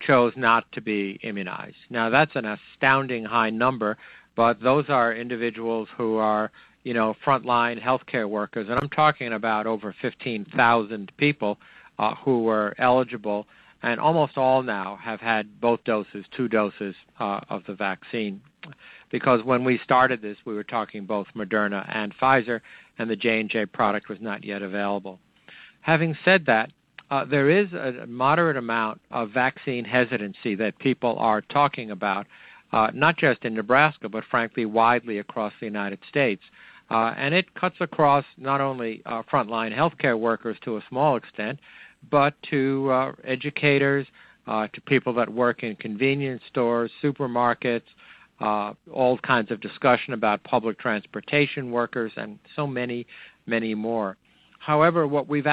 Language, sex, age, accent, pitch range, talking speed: English, male, 50-69, American, 110-135 Hz, 150 wpm